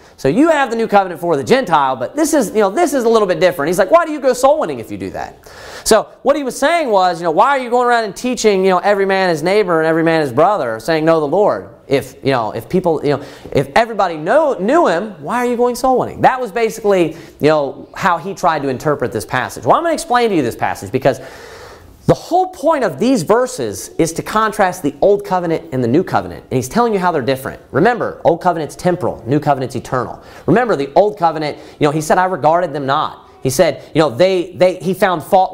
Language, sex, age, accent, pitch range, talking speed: English, male, 30-49, American, 160-255 Hz, 255 wpm